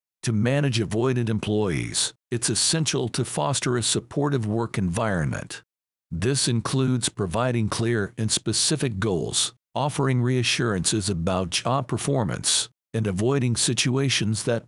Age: 50-69